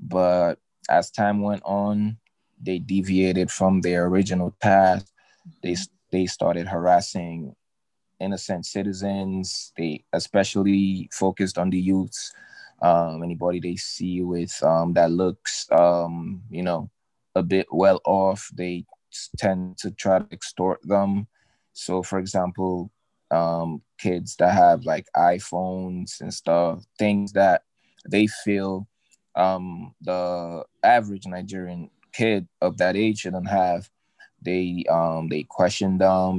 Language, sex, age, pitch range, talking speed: English, male, 20-39, 90-100 Hz, 125 wpm